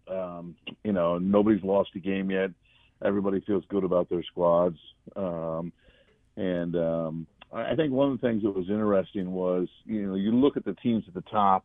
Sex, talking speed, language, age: male, 190 wpm, English, 50-69